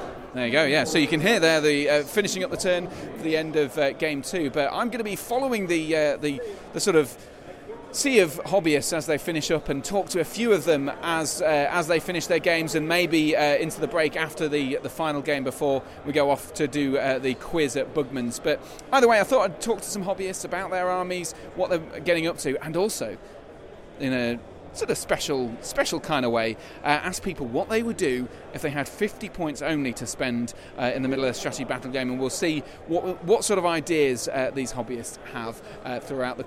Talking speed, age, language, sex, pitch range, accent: 235 wpm, 30-49, English, male, 130-180 Hz, British